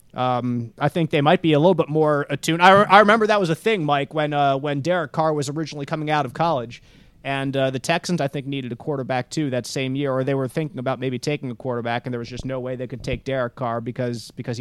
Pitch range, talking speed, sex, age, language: 130-170 Hz, 270 wpm, male, 30-49, English